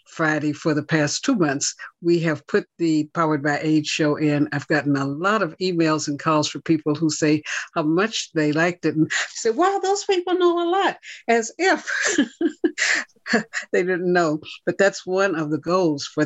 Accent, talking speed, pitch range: American, 190 wpm, 150-185 Hz